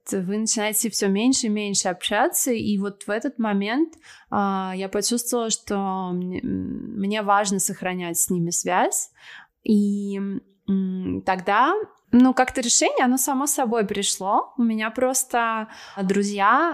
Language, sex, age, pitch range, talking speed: Russian, female, 20-39, 190-225 Hz, 130 wpm